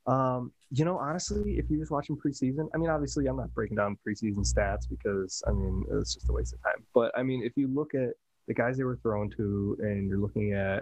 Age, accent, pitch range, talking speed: 20-39, American, 105-135 Hz, 245 wpm